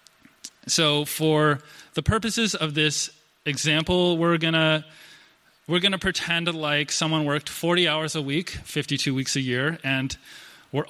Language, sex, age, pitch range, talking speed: English, male, 20-39, 140-170 Hz, 140 wpm